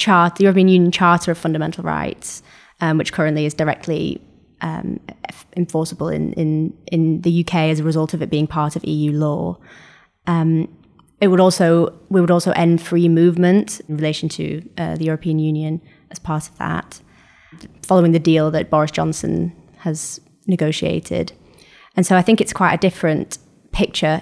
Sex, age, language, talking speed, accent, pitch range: female, 20-39, English, 170 wpm, British, 160-180 Hz